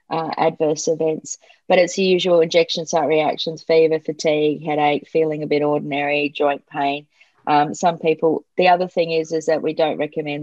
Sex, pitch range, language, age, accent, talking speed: female, 160-185 Hz, English, 30-49, Australian, 180 wpm